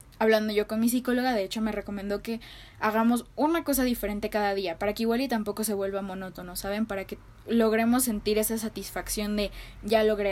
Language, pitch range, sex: Spanish, 195-225 Hz, female